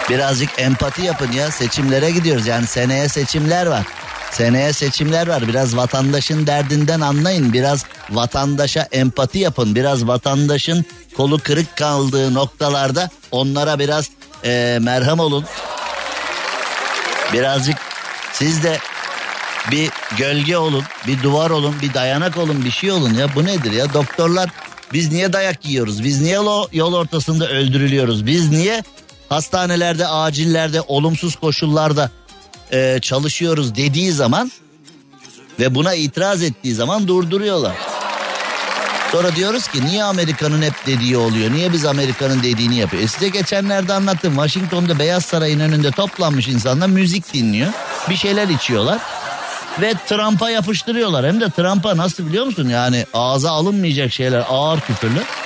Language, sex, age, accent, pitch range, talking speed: Turkish, male, 50-69, native, 135-175 Hz, 130 wpm